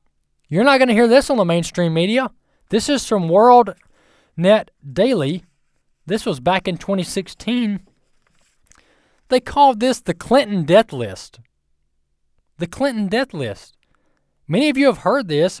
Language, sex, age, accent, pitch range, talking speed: English, male, 20-39, American, 140-225 Hz, 145 wpm